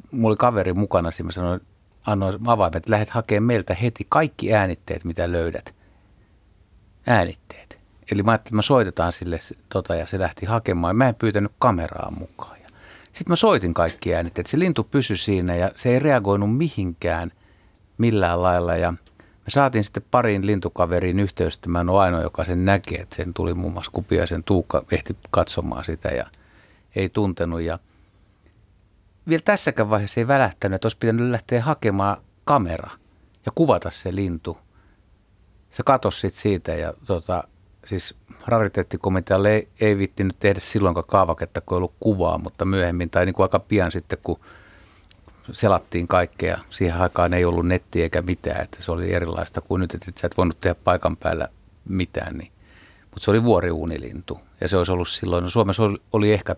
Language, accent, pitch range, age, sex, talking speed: Finnish, native, 90-105 Hz, 60-79, male, 170 wpm